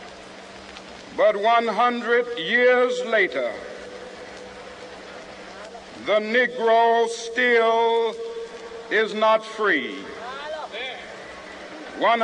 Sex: male